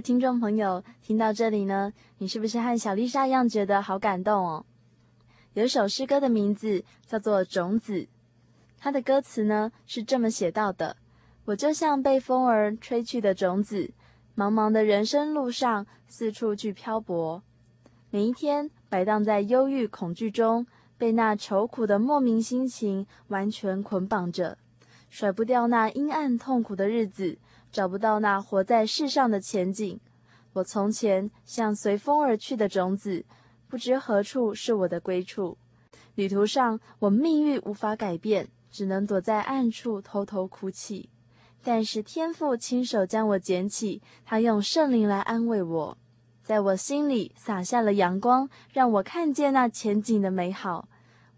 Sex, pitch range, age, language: female, 195-235 Hz, 20-39, Chinese